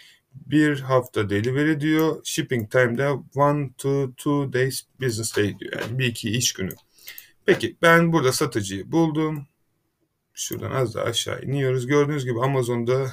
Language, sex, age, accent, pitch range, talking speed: Turkish, male, 30-49, native, 115-150 Hz, 135 wpm